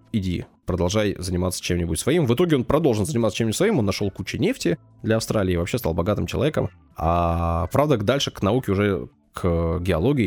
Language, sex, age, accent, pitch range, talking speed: Russian, male, 20-39, native, 90-125 Hz, 180 wpm